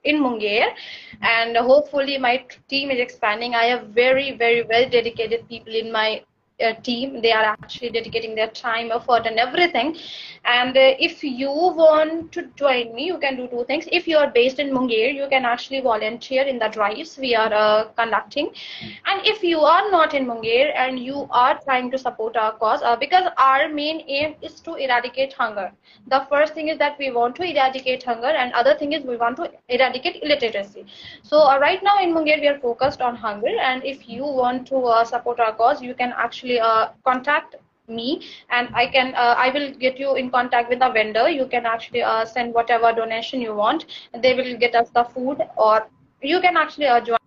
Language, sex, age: Hindi, female, 20-39